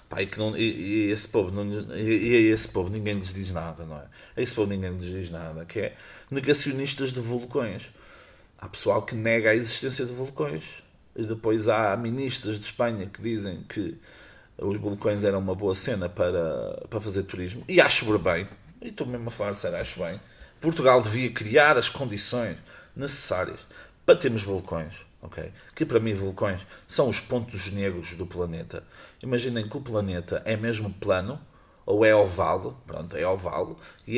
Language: Portuguese